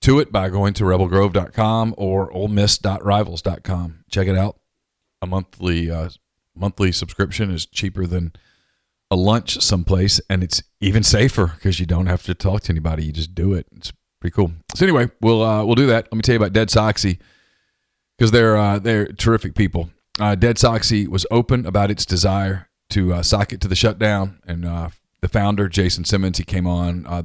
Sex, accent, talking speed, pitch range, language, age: male, American, 185 wpm, 90-105 Hz, English, 40-59